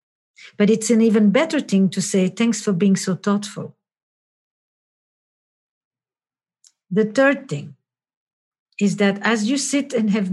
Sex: female